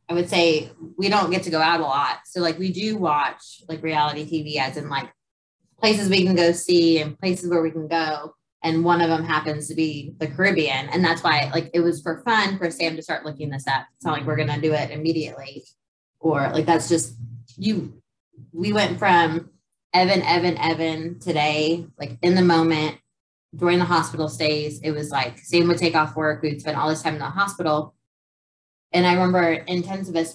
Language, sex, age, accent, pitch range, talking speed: English, female, 20-39, American, 150-170 Hz, 210 wpm